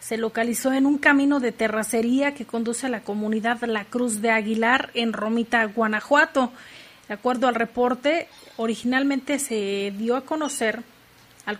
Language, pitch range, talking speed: Spanish, 225-260 Hz, 150 wpm